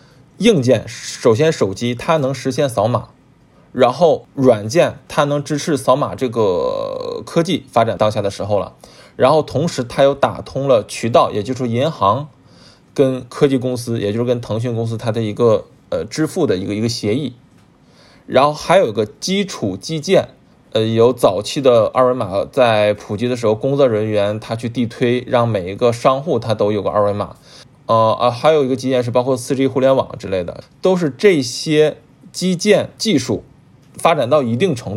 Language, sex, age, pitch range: Chinese, male, 20-39, 115-150 Hz